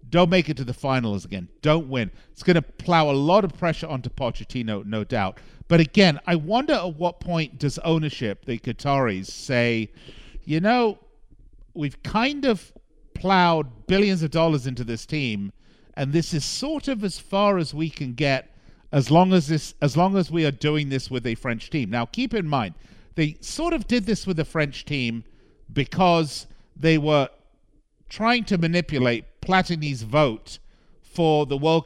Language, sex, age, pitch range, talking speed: English, male, 50-69, 125-170 Hz, 180 wpm